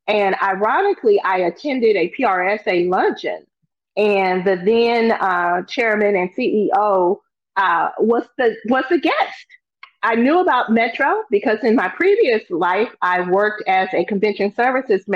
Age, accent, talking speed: 30-49, American, 140 wpm